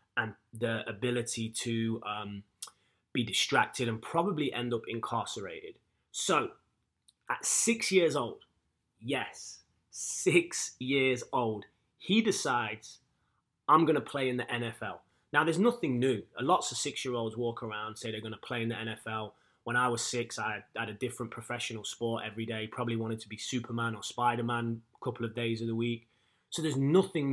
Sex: male